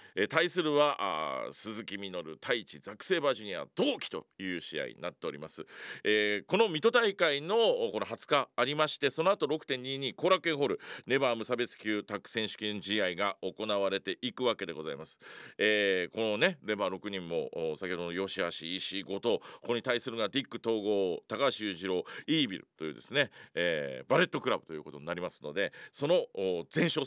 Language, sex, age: Japanese, male, 40-59